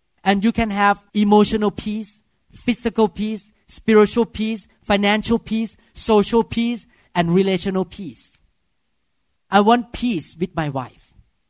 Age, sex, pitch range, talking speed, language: 40-59, male, 165-225 Hz, 120 wpm, English